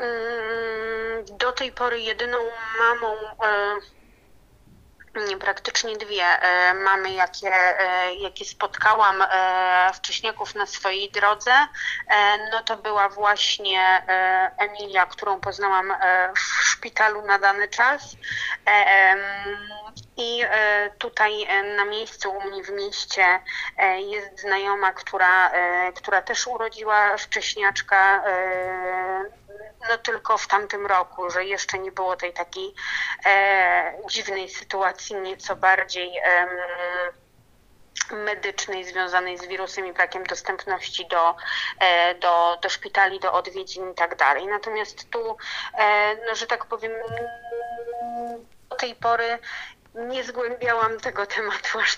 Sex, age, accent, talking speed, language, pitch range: female, 20-39, native, 105 wpm, Polish, 185-225 Hz